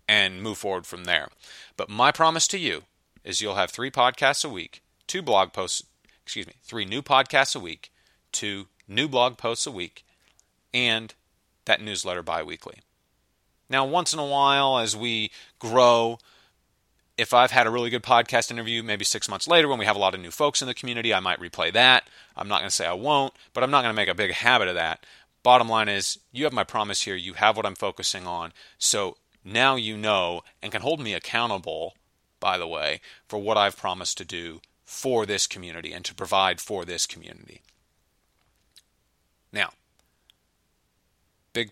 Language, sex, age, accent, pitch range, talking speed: English, male, 30-49, American, 95-125 Hz, 190 wpm